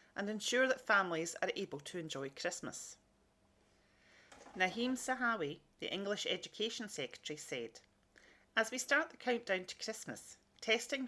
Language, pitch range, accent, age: English, 155-230 Hz, British, 40-59